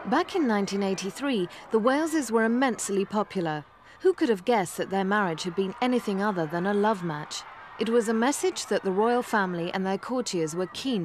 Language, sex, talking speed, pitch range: English, female, 195 wpm, 175-230 Hz